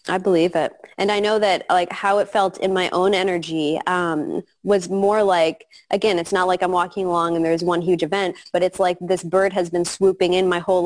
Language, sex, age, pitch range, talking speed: English, female, 20-39, 175-205 Hz, 230 wpm